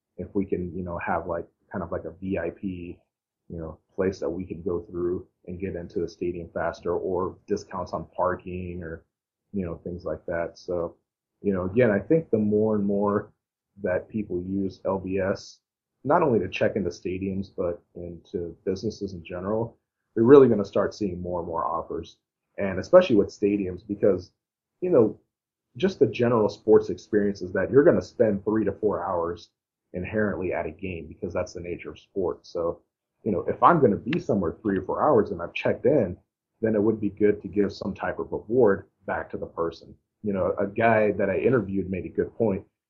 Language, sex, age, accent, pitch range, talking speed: English, male, 30-49, American, 90-105 Hz, 205 wpm